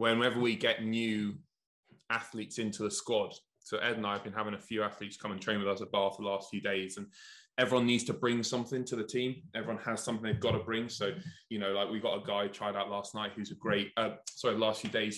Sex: male